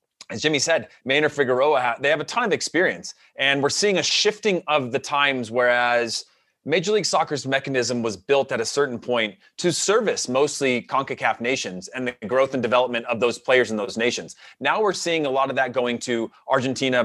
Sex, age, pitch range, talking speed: male, 30-49, 125-165 Hz, 195 wpm